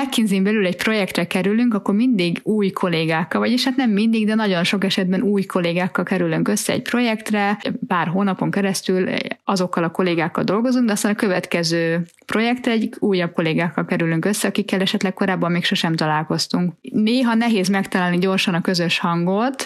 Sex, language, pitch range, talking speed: female, Hungarian, 175-220 Hz, 160 wpm